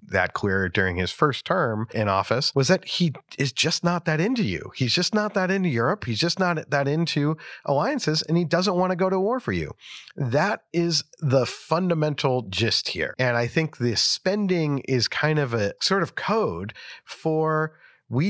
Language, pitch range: English, 135-180 Hz